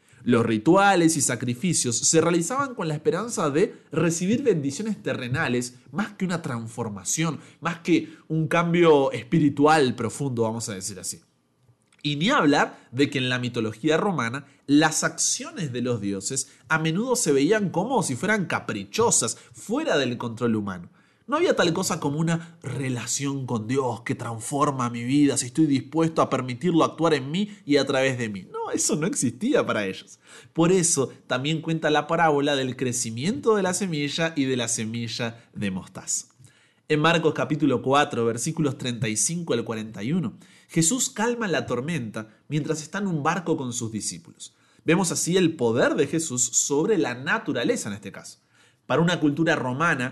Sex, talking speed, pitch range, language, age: male, 165 wpm, 120-165 Hz, Spanish, 30-49